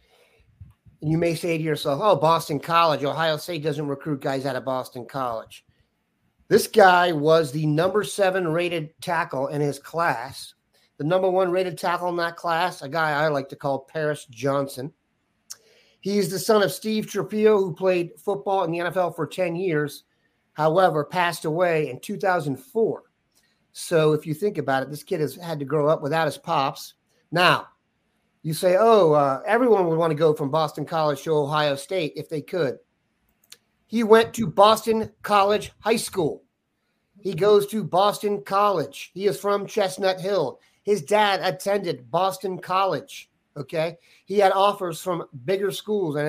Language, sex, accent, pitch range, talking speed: English, male, American, 150-195 Hz, 170 wpm